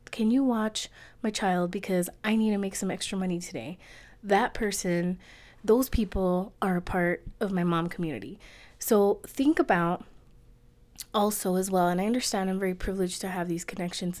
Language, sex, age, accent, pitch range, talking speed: English, female, 20-39, American, 175-205 Hz, 175 wpm